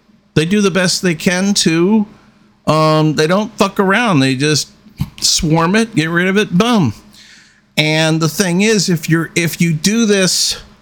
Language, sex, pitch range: English, male, 135-190 Hz